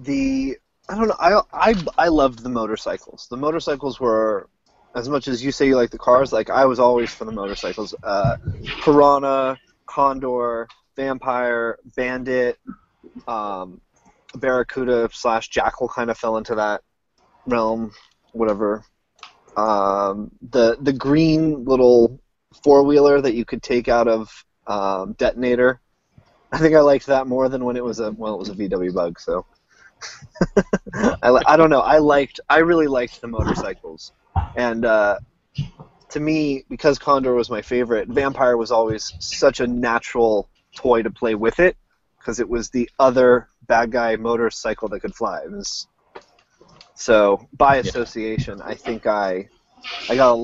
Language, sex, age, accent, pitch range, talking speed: English, male, 20-39, American, 115-140 Hz, 155 wpm